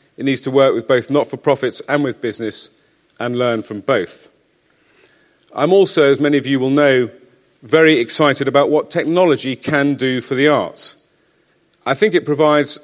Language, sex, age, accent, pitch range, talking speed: English, male, 40-59, British, 120-145 Hz, 170 wpm